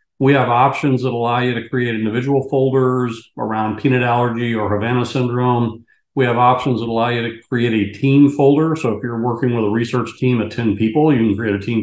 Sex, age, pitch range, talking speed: male, 50-69, 115-135 Hz, 220 wpm